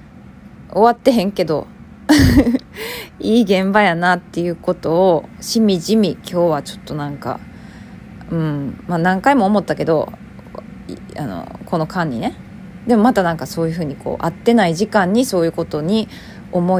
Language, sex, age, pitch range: Japanese, female, 20-39, 160-215 Hz